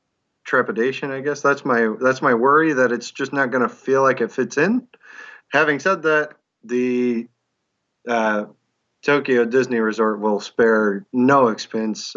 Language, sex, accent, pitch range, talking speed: English, male, American, 110-130 Hz, 155 wpm